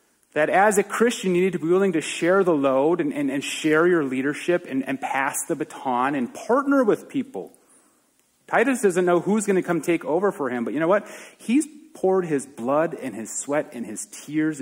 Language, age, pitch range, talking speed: English, 30-49, 140-220 Hz, 220 wpm